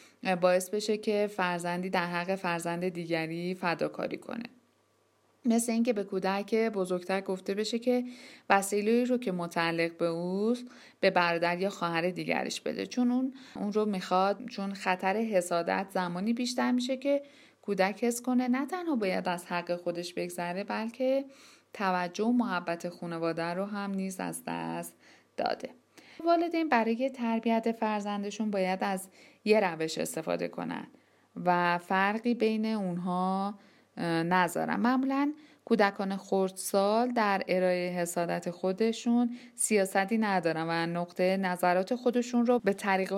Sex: female